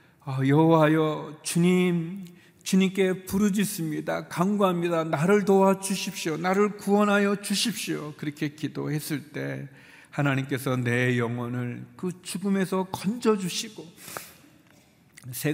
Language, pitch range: Korean, 145-190 Hz